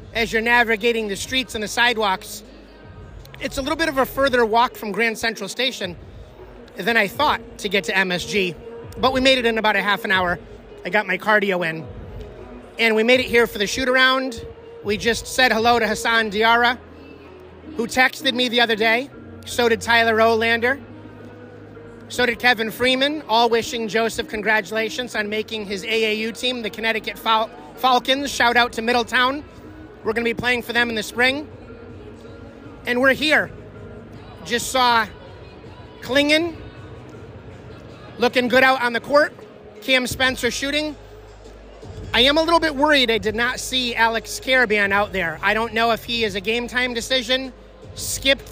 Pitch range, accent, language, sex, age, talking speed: 215-255 Hz, American, English, male, 30-49, 170 wpm